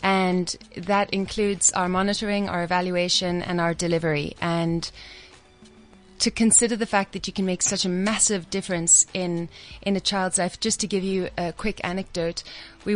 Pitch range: 170-195 Hz